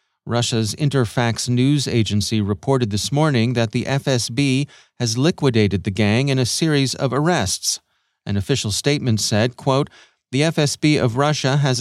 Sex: male